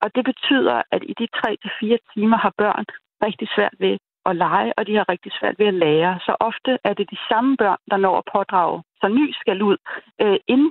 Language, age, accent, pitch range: Danish, 40-59, native, 195-240 Hz